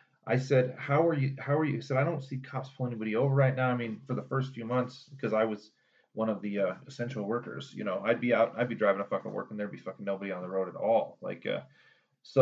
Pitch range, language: 105-130 Hz, English